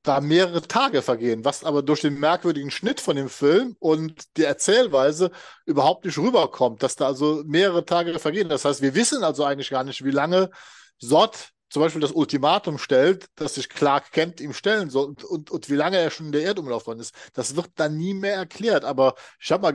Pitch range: 145-185 Hz